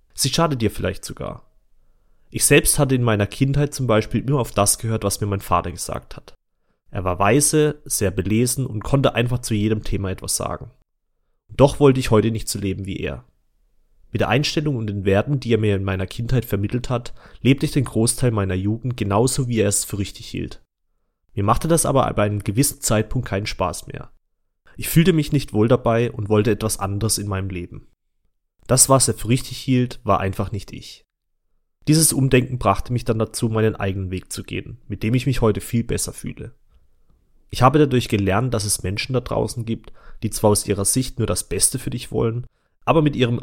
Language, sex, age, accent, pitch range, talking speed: German, male, 30-49, German, 100-125 Hz, 205 wpm